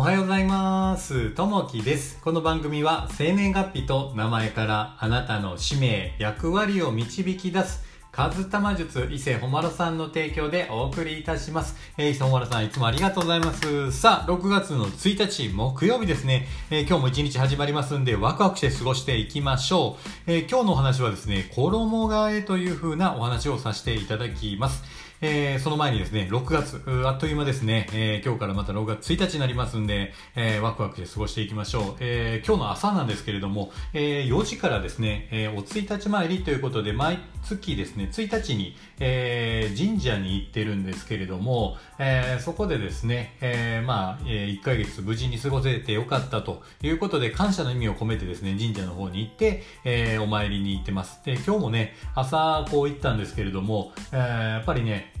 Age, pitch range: 40-59, 110-160 Hz